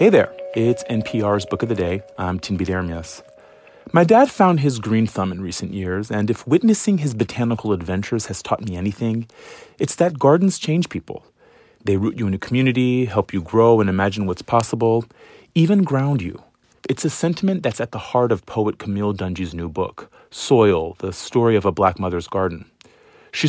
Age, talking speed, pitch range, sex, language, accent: 30-49, 185 wpm, 95-135 Hz, male, English, American